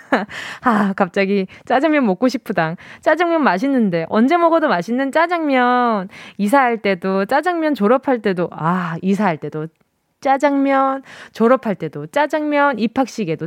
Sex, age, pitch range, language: female, 20-39, 195-295 Hz, Korean